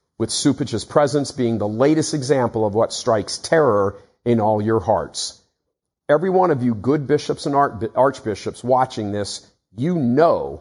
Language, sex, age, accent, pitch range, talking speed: English, male, 50-69, American, 120-150 Hz, 155 wpm